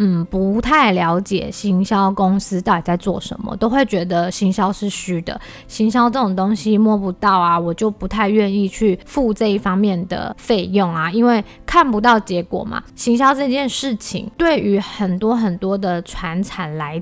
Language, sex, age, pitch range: Chinese, female, 20-39, 190-230 Hz